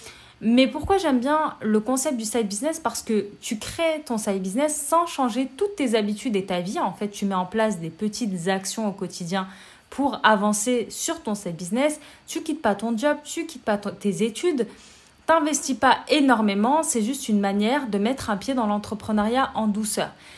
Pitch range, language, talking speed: 205-265 Hz, French, 205 wpm